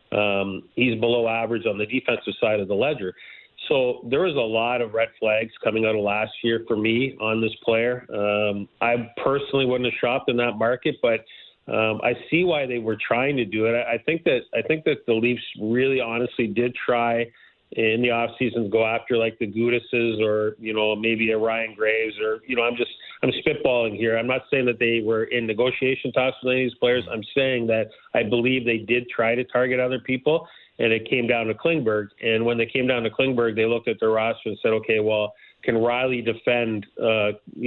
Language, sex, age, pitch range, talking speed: English, male, 40-59, 110-125 Hz, 220 wpm